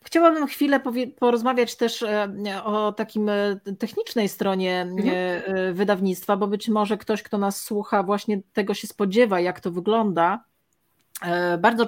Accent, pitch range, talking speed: native, 185-220 Hz, 120 wpm